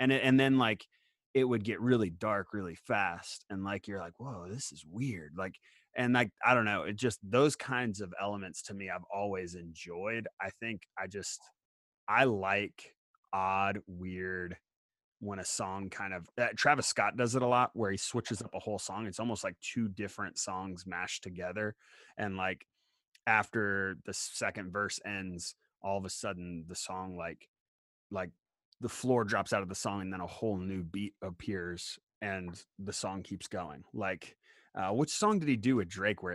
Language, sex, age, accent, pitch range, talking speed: English, male, 30-49, American, 95-115 Hz, 190 wpm